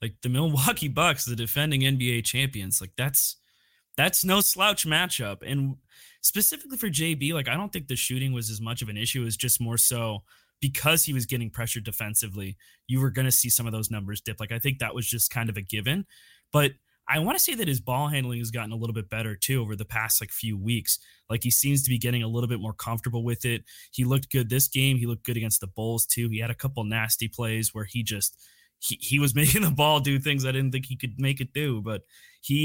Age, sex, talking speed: 20-39, male, 250 wpm